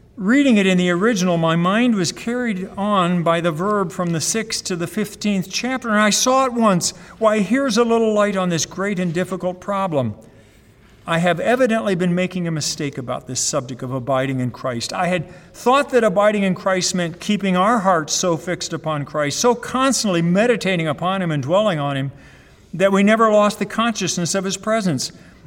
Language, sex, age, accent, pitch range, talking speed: English, male, 50-69, American, 150-205 Hz, 195 wpm